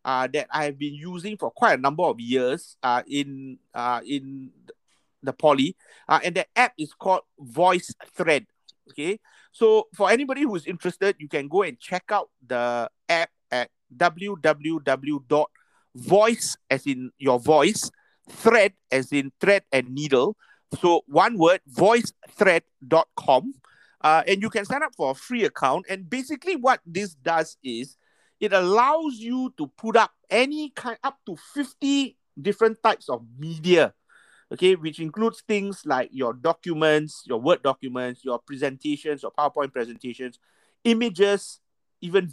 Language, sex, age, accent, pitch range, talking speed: English, male, 50-69, Malaysian, 145-220 Hz, 145 wpm